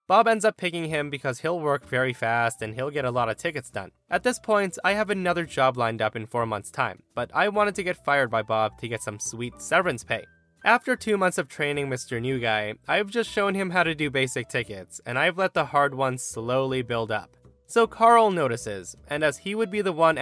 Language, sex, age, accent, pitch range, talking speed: English, male, 20-39, American, 115-180 Hz, 240 wpm